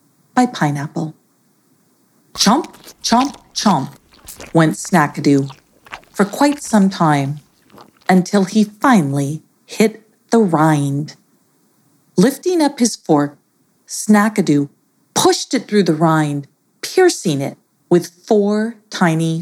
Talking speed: 100 wpm